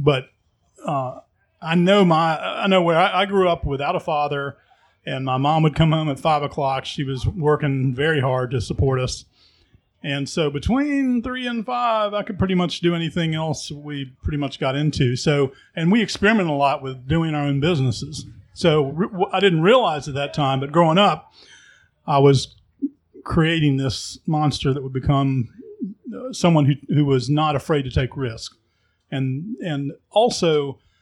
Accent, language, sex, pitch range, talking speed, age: American, English, male, 135-170 Hz, 180 wpm, 40-59